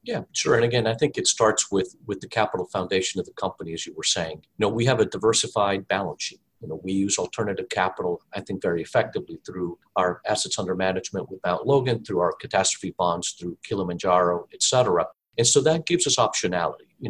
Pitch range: 105-175 Hz